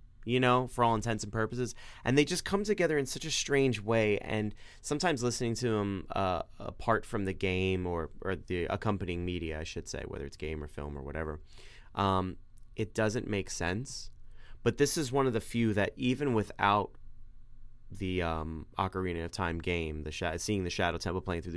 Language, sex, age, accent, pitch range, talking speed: English, male, 30-49, American, 85-115 Hz, 200 wpm